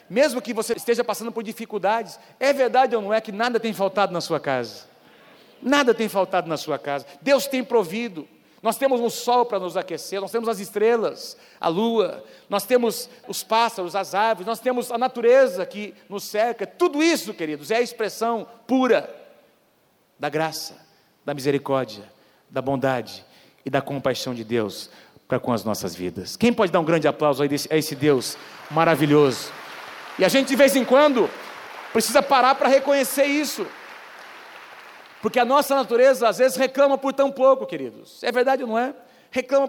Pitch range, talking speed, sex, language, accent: 160-250 Hz, 175 wpm, male, Portuguese, Brazilian